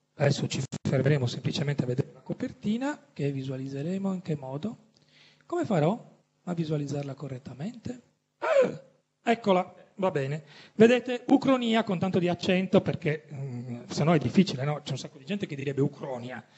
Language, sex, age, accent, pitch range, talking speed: Italian, male, 40-59, native, 145-190 Hz, 150 wpm